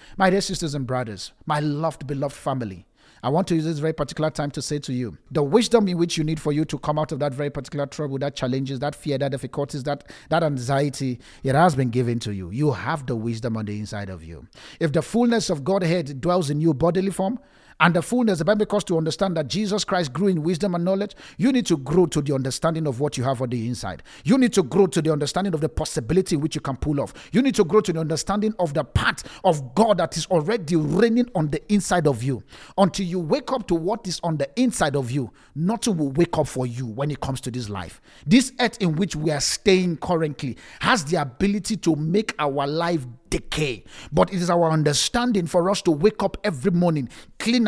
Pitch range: 140-185 Hz